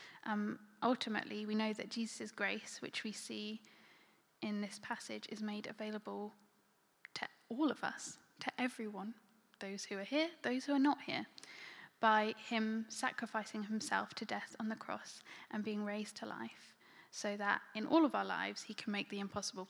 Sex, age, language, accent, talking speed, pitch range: female, 10-29, English, British, 175 wpm, 210-235 Hz